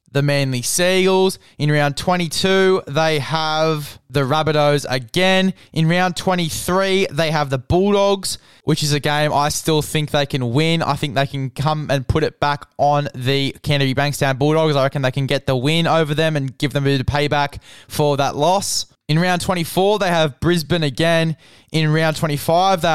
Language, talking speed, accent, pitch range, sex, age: English, 180 wpm, Australian, 140-170 Hz, male, 20-39